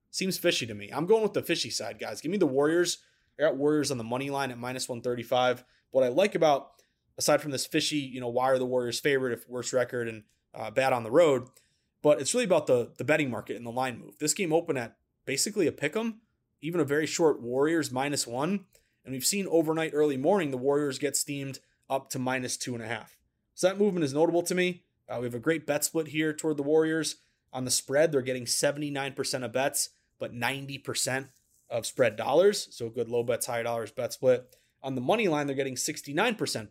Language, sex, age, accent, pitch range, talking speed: English, male, 20-39, American, 125-155 Hz, 225 wpm